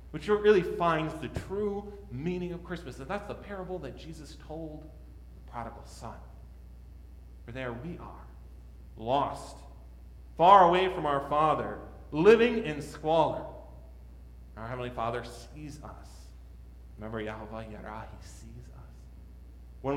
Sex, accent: male, American